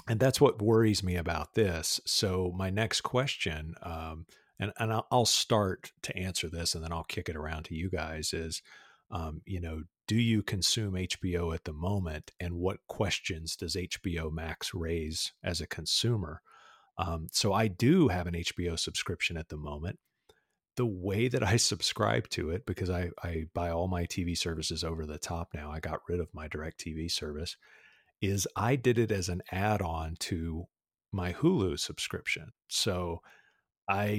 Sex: male